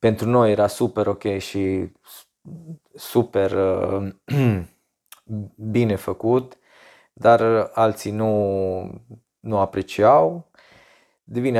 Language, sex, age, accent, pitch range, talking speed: Romanian, male, 20-39, native, 105-150 Hz, 80 wpm